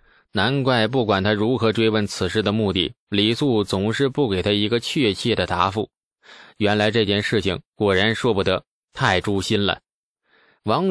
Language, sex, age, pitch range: Chinese, male, 20-39, 100-140 Hz